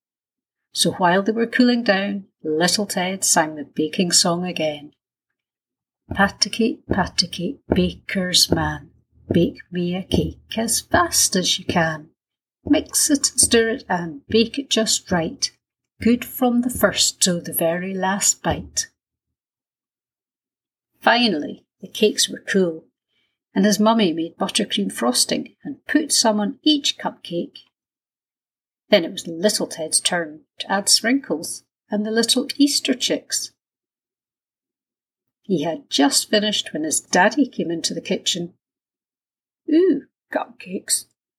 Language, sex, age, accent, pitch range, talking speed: English, female, 60-79, British, 175-245 Hz, 130 wpm